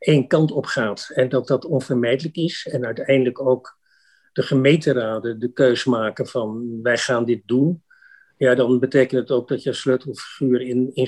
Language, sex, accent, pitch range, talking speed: Dutch, male, Dutch, 120-135 Hz, 175 wpm